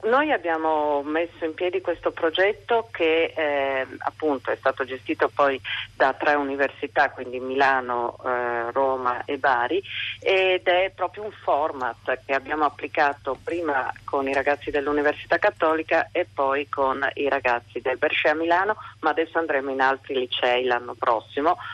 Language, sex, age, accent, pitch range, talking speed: Italian, female, 40-59, native, 135-185 Hz, 145 wpm